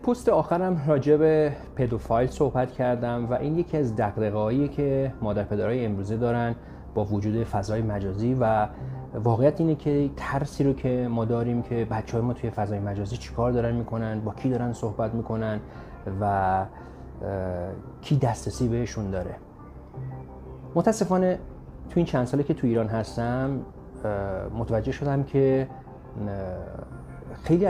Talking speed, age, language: 135 wpm, 30-49, Persian